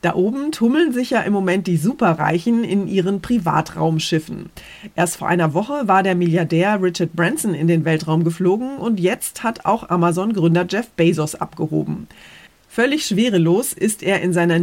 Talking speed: 160 wpm